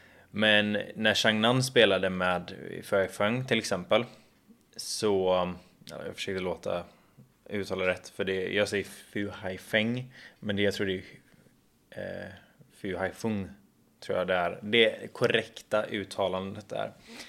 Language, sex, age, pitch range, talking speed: Swedish, male, 20-39, 95-110 Hz, 130 wpm